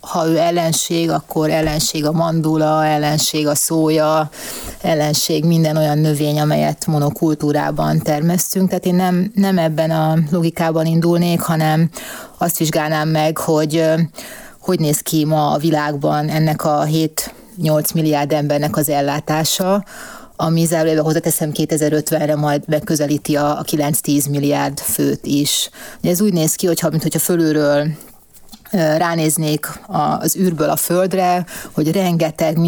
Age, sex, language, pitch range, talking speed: 30-49, female, Hungarian, 150-170 Hz, 125 wpm